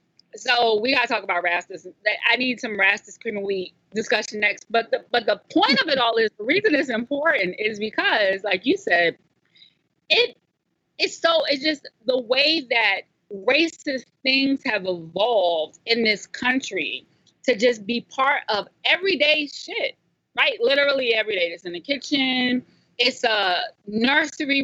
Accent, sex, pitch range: American, female, 210-280 Hz